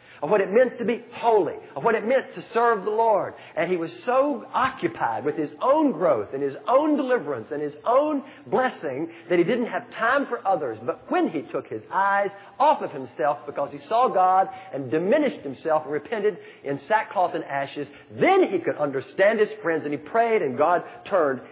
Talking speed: 205 wpm